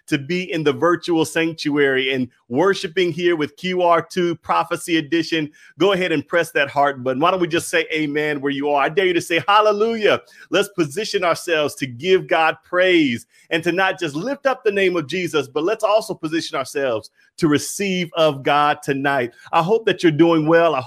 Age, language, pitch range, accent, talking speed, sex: 30-49, English, 150-180 Hz, American, 200 wpm, male